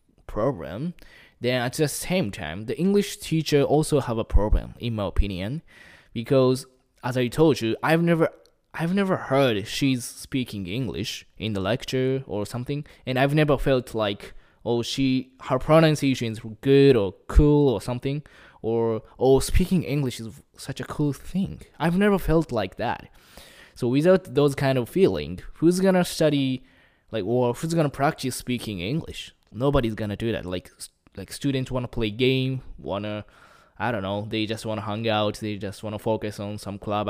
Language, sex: Japanese, male